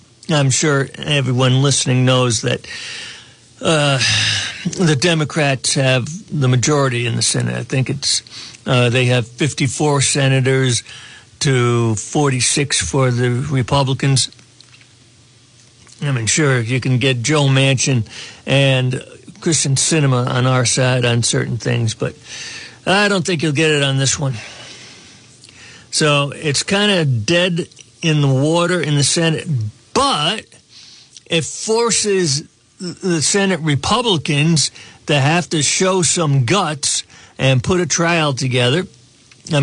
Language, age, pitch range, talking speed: English, 60-79, 125-155 Hz, 125 wpm